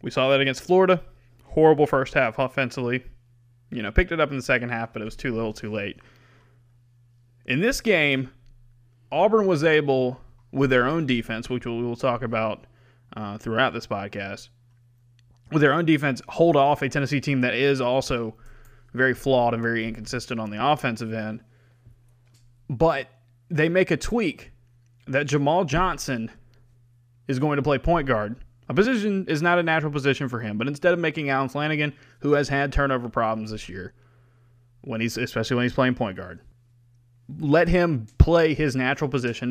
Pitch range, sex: 120-145 Hz, male